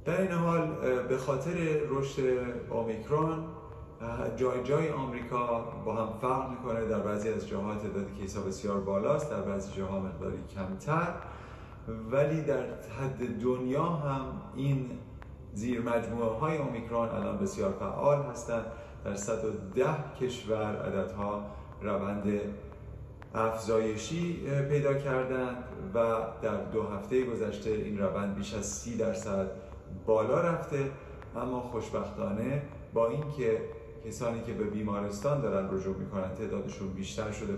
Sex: male